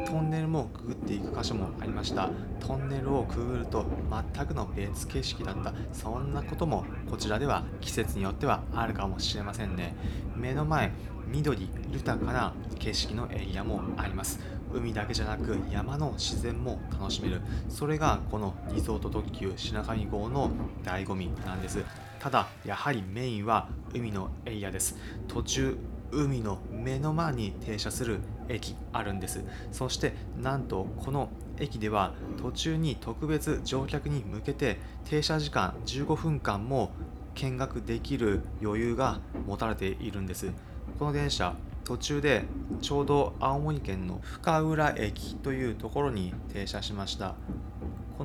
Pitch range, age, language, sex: 100-135 Hz, 20-39, Japanese, male